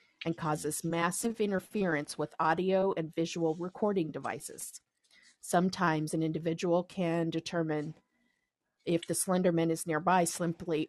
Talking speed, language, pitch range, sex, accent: 115 wpm, English, 160-190 Hz, female, American